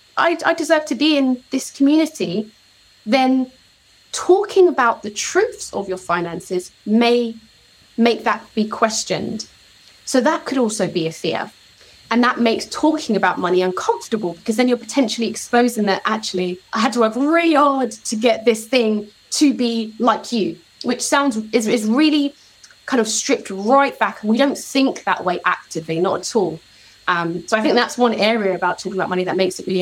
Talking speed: 180 wpm